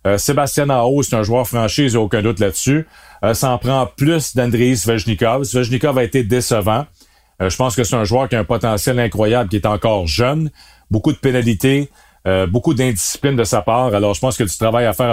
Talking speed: 220 wpm